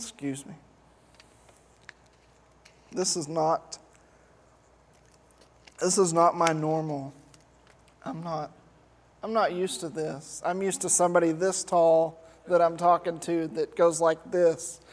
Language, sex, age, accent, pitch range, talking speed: English, male, 20-39, American, 165-195 Hz, 125 wpm